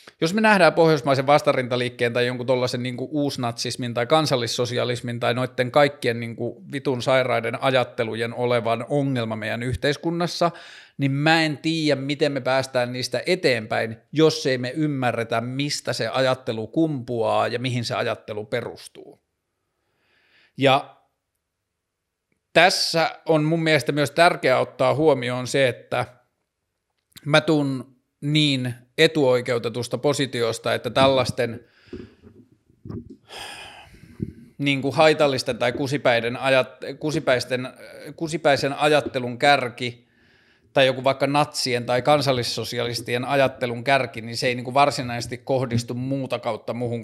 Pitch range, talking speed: 120-140 Hz, 115 wpm